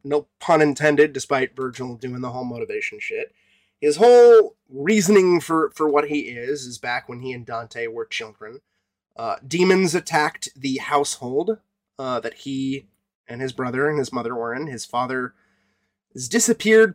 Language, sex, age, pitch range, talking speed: English, male, 20-39, 125-190 Hz, 165 wpm